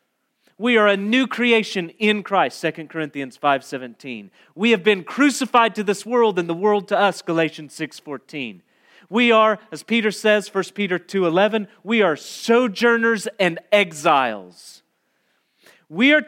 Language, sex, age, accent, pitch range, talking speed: English, male, 30-49, American, 155-230 Hz, 145 wpm